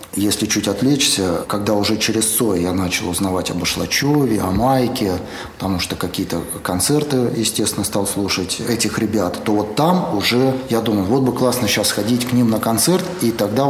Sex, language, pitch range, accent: male, Russian, 100-120 Hz, native